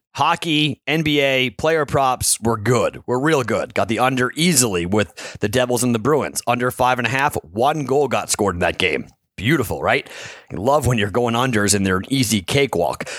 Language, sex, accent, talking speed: English, male, American, 200 wpm